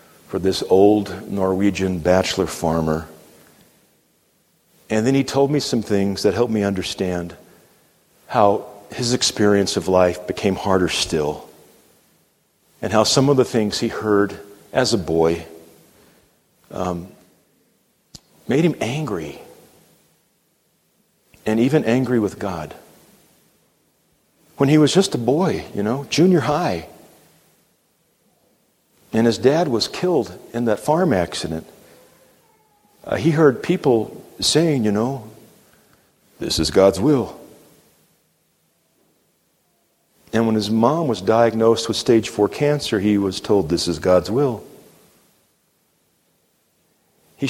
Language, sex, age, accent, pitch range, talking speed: English, male, 50-69, American, 95-125 Hz, 115 wpm